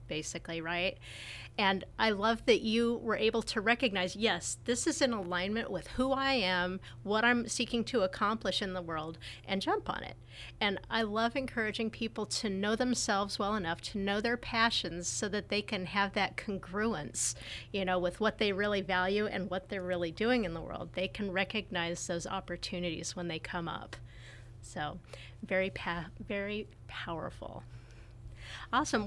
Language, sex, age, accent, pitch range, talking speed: English, female, 30-49, American, 185-230 Hz, 170 wpm